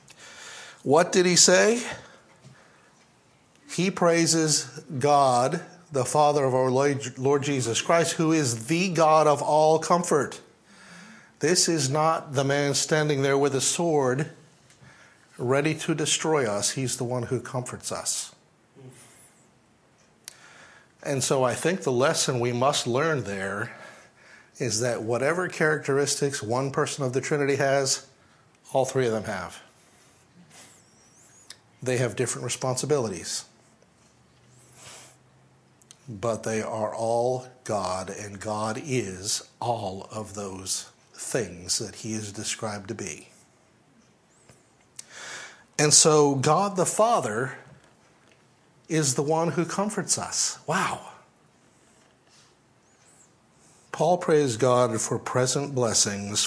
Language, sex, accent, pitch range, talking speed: English, male, American, 115-155 Hz, 115 wpm